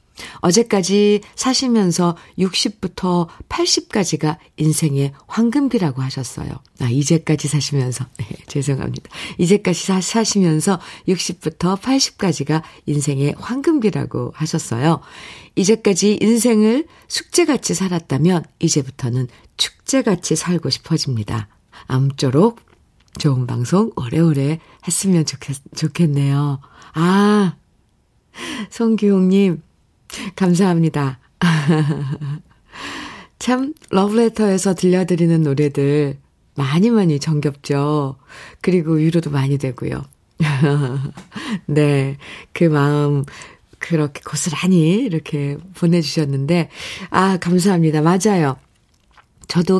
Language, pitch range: Korean, 145-190 Hz